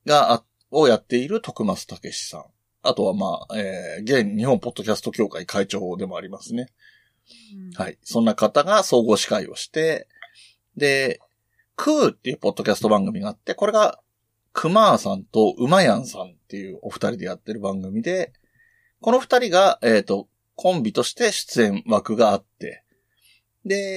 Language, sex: Japanese, male